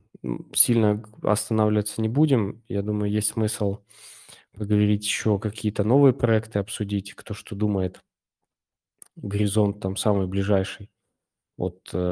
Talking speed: 110 wpm